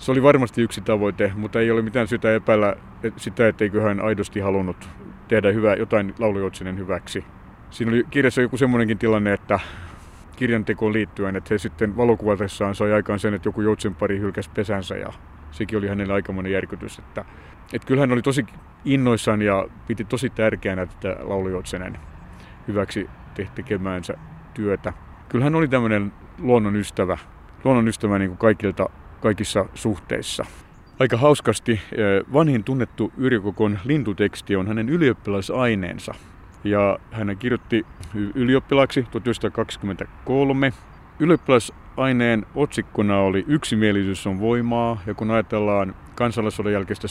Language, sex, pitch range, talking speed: Finnish, male, 100-115 Hz, 130 wpm